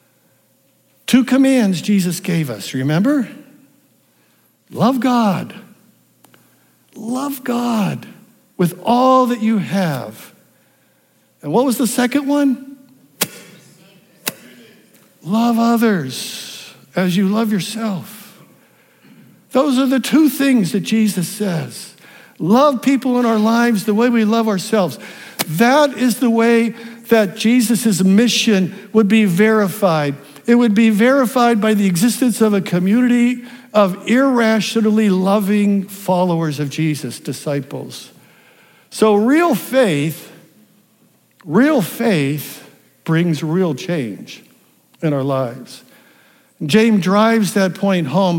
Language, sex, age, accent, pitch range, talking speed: English, male, 60-79, American, 170-235 Hz, 110 wpm